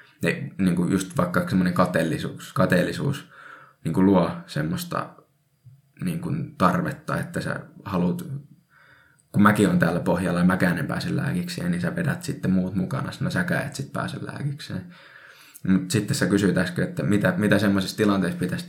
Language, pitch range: Finnish, 100-150 Hz